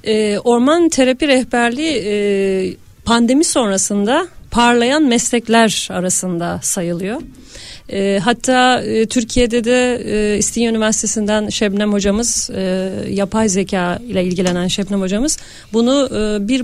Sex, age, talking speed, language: female, 40-59, 110 wpm, Turkish